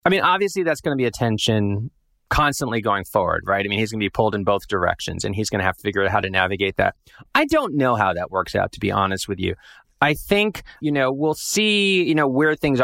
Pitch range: 100-135 Hz